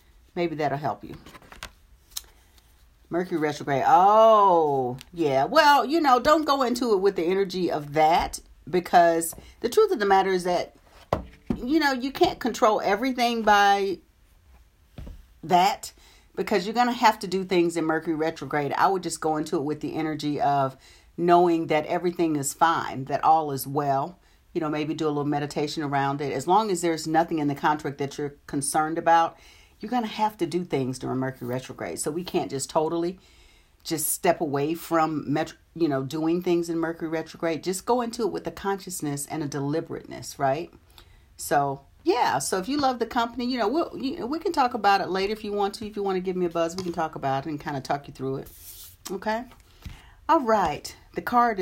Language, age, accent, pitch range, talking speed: English, 40-59, American, 145-205 Hz, 195 wpm